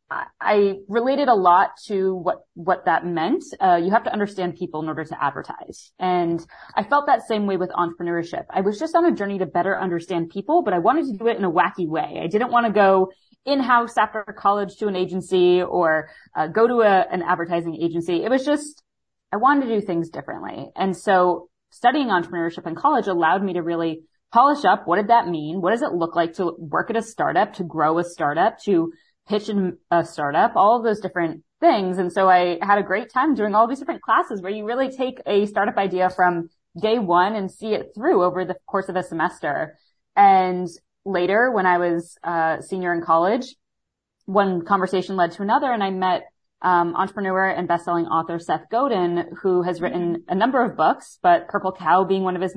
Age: 20-39